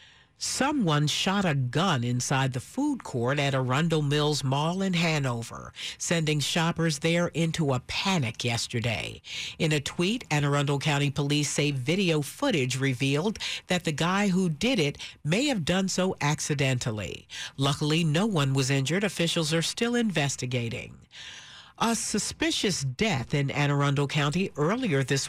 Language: English